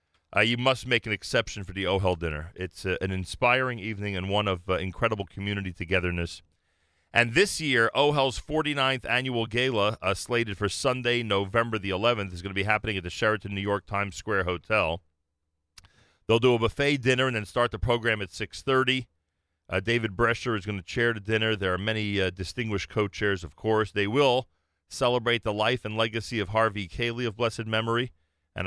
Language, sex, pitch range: English, male, 95-120 Hz